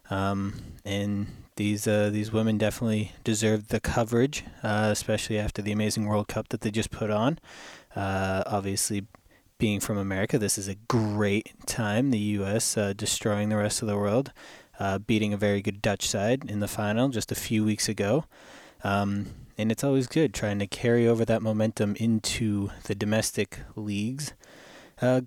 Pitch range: 105-120 Hz